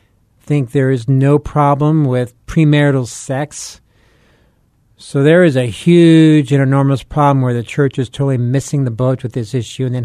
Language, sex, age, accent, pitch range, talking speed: English, male, 50-69, American, 120-145 Hz, 175 wpm